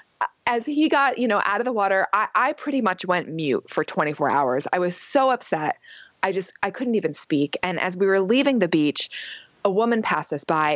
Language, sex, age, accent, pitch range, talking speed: English, female, 20-39, American, 165-245 Hz, 225 wpm